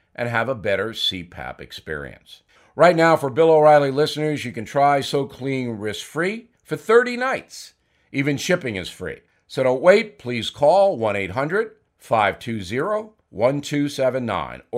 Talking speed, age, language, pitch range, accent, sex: 120 wpm, 50-69, English, 130-180 Hz, American, male